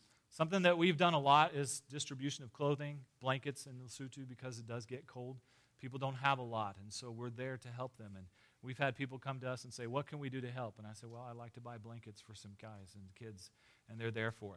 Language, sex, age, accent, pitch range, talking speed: English, male, 40-59, American, 110-135 Hz, 260 wpm